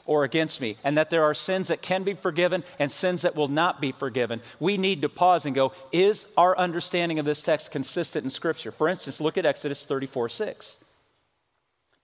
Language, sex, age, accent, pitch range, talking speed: English, male, 40-59, American, 150-195 Hz, 200 wpm